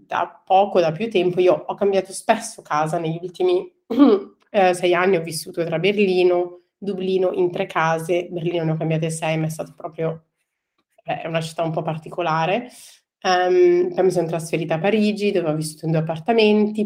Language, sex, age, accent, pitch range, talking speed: Italian, female, 30-49, native, 165-190 Hz, 180 wpm